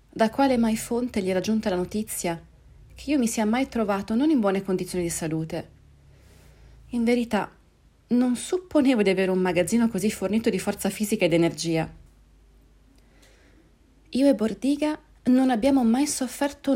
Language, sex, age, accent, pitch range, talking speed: Italian, female, 30-49, native, 175-235 Hz, 155 wpm